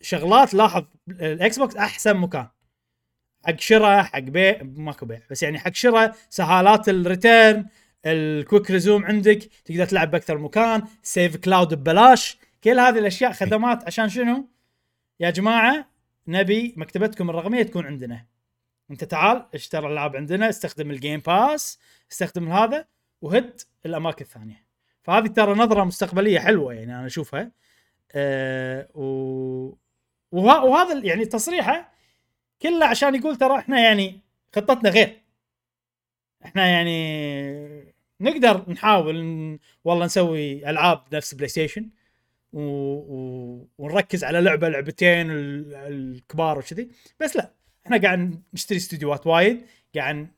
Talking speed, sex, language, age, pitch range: 125 wpm, male, Arabic, 20-39, 150-220 Hz